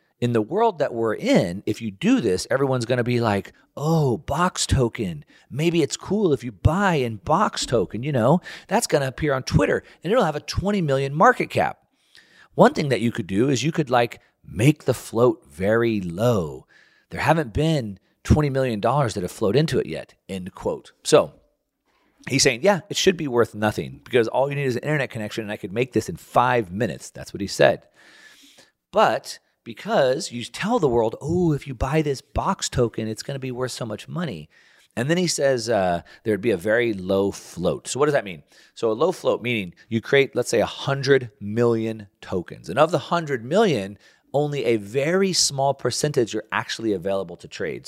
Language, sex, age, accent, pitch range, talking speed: English, male, 40-59, American, 110-155 Hz, 205 wpm